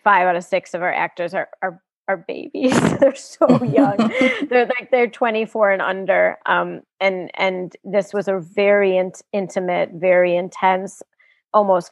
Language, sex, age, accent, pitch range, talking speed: English, female, 30-49, American, 185-205 Hz, 155 wpm